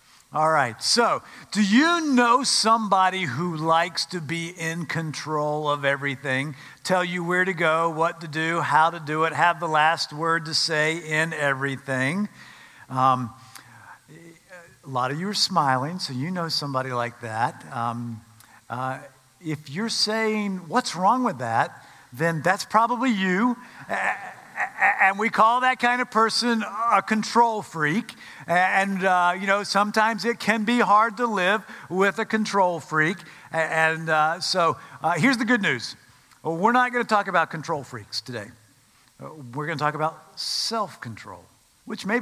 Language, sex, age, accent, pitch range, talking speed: English, male, 50-69, American, 150-220 Hz, 160 wpm